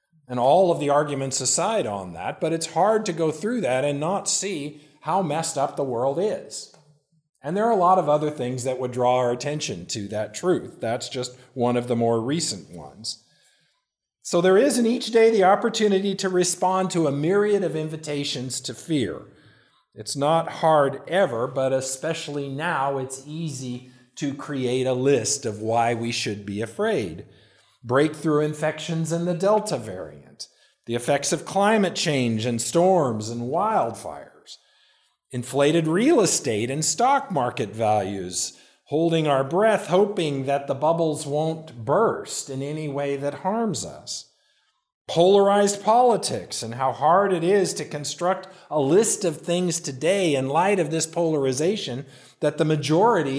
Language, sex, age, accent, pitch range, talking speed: English, male, 50-69, American, 130-180 Hz, 160 wpm